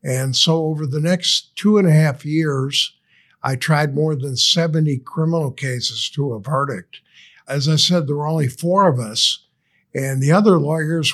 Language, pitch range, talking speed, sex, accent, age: English, 135-160 Hz, 180 wpm, male, American, 50-69